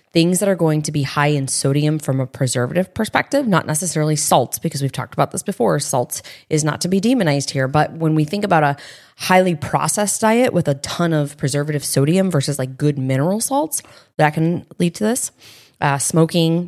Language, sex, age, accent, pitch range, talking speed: English, female, 20-39, American, 140-170 Hz, 200 wpm